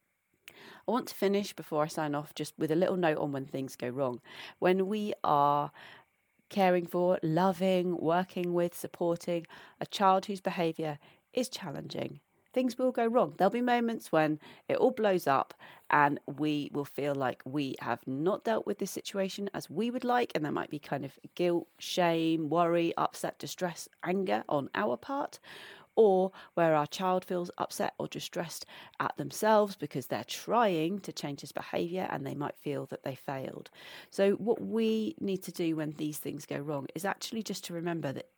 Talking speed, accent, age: 185 wpm, British, 40-59